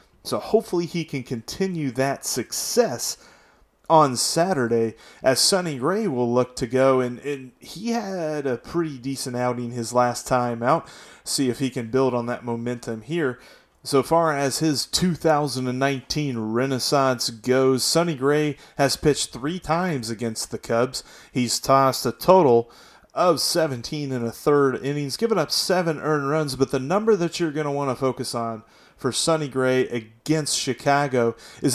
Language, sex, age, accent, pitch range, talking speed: English, male, 30-49, American, 125-155 Hz, 160 wpm